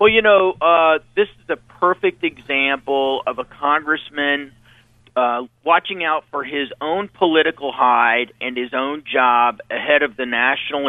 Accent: American